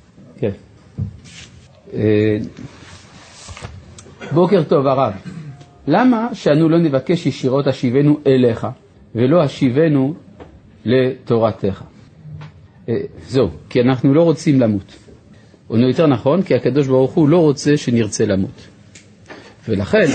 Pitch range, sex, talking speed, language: 115-165 Hz, male, 100 wpm, Hebrew